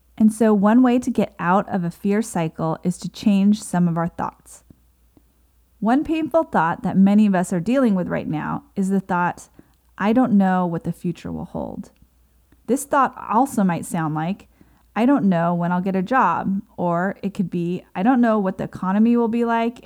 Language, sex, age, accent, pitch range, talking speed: English, female, 30-49, American, 175-225 Hz, 205 wpm